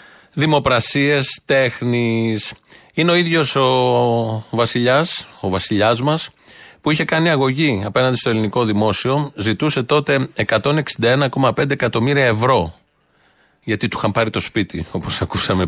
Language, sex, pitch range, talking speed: Greek, male, 115-145 Hz, 120 wpm